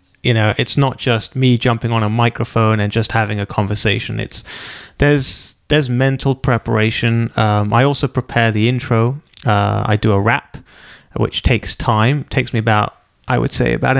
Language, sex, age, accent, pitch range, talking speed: English, male, 30-49, British, 110-130 Hz, 175 wpm